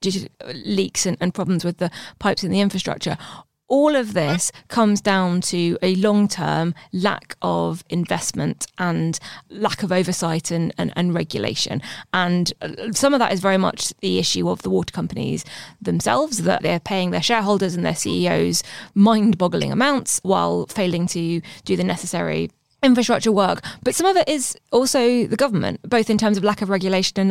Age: 20-39